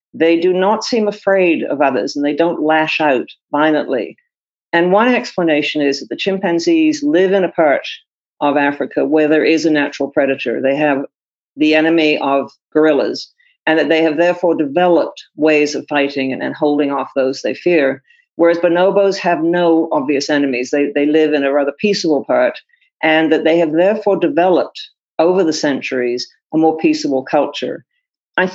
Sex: female